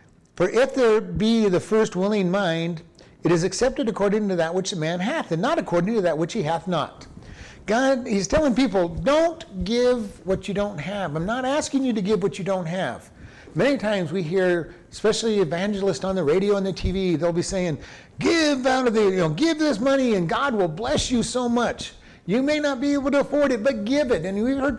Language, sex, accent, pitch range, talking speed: English, male, American, 165-225 Hz, 225 wpm